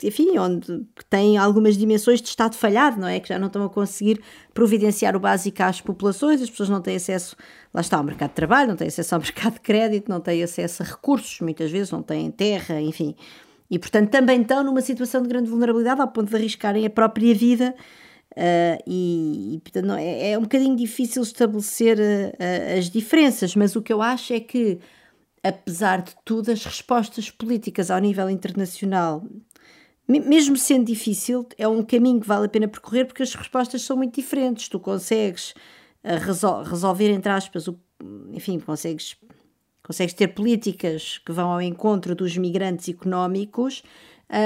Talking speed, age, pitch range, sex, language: 175 wpm, 50-69, 190-235 Hz, female, Portuguese